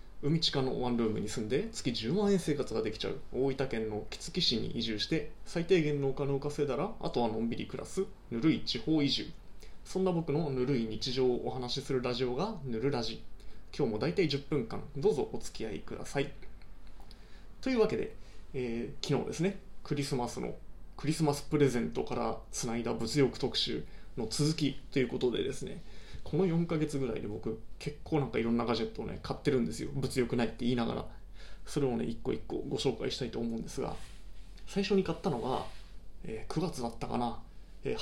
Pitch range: 120-160 Hz